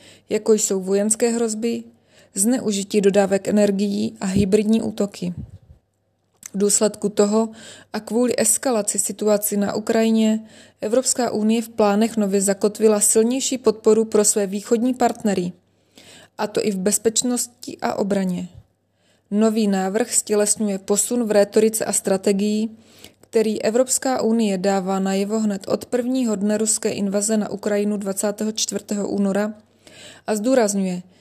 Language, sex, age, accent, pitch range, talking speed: Czech, female, 20-39, native, 200-225 Hz, 120 wpm